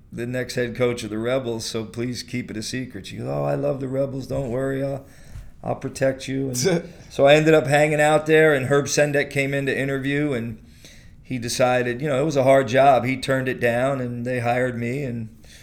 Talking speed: 230 wpm